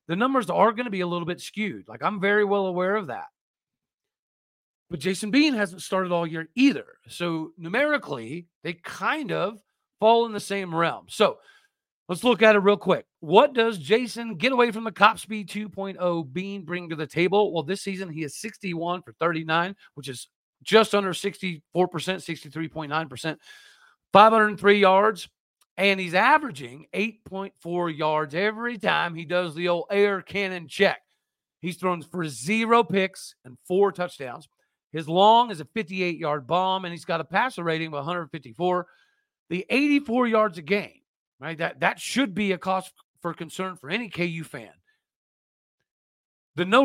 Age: 40-59